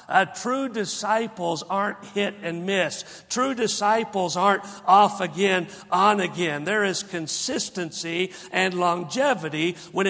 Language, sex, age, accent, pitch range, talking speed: English, male, 50-69, American, 150-195 Hz, 120 wpm